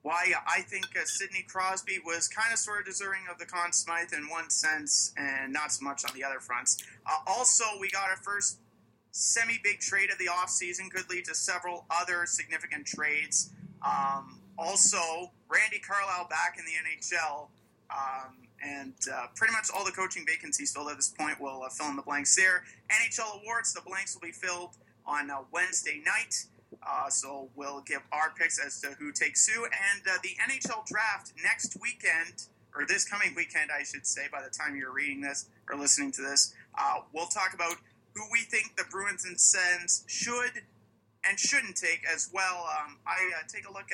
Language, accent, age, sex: English, American, 30-49, male